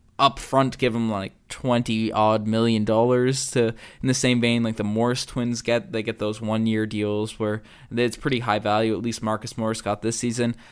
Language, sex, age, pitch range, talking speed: English, male, 20-39, 115-150 Hz, 200 wpm